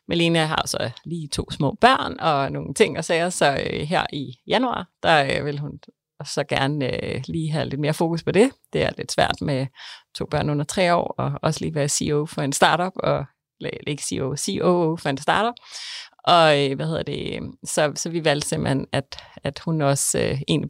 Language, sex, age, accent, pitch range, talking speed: English, female, 30-49, Danish, 145-185 Hz, 210 wpm